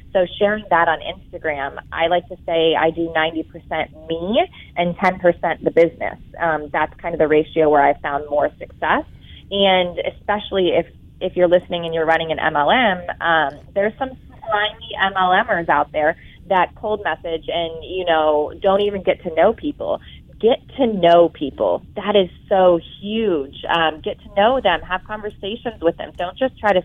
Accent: American